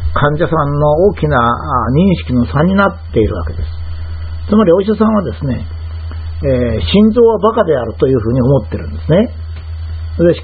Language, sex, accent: Japanese, male, native